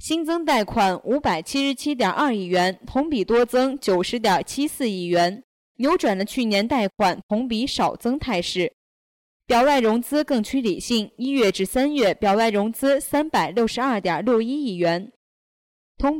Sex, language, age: female, Chinese, 20-39